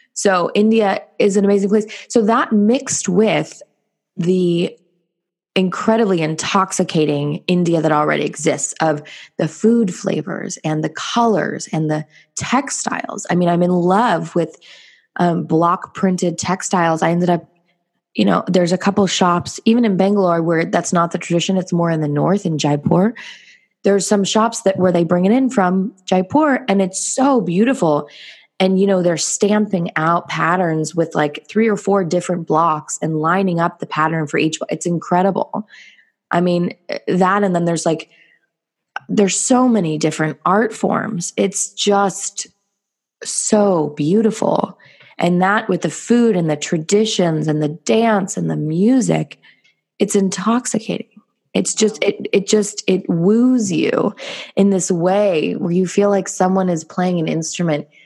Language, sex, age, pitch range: English, female, 20-39, 170-205 Hz